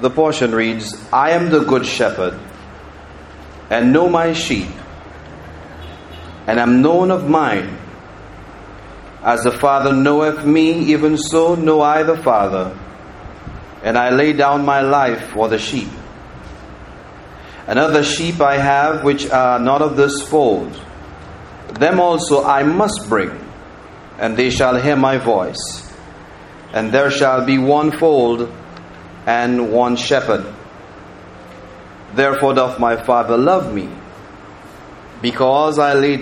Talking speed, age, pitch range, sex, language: 125 wpm, 40-59, 100-140 Hz, male, English